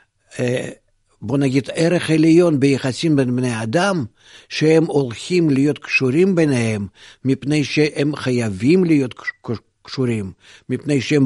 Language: Hebrew